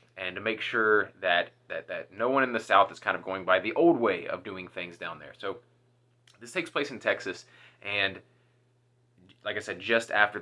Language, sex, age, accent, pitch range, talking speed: English, male, 20-39, American, 105-125 Hz, 215 wpm